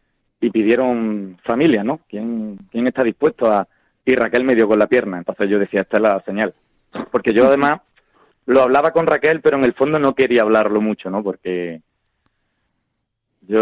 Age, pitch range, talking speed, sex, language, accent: 30-49, 100-125 Hz, 180 wpm, male, Spanish, Spanish